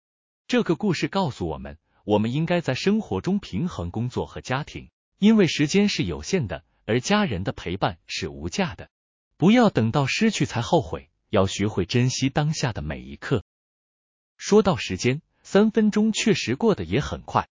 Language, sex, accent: Chinese, male, native